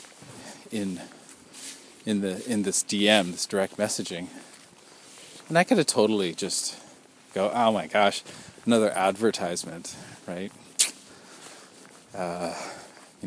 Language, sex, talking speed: English, male, 110 wpm